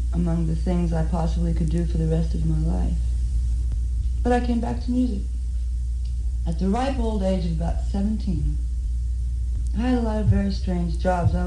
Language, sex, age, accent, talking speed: English, female, 40-59, American, 190 wpm